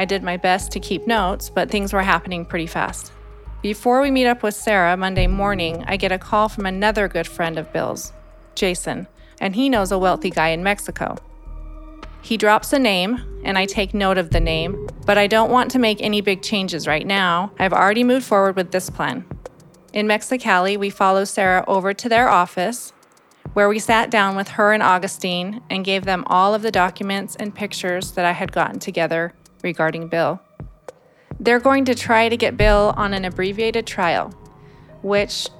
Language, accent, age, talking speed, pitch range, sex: English, American, 30-49, 190 wpm, 185-220 Hz, female